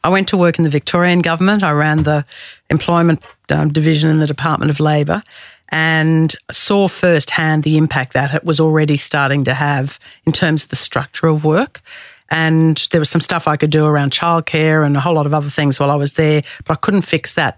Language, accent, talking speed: English, Australian, 220 wpm